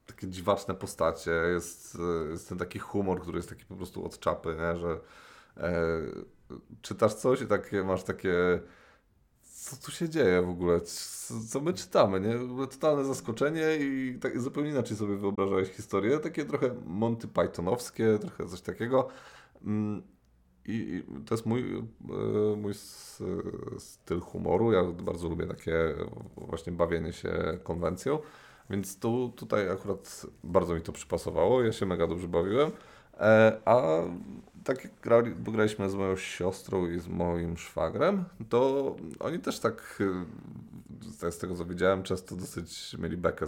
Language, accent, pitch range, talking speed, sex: Polish, native, 85-115 Hz, 135 wpm, male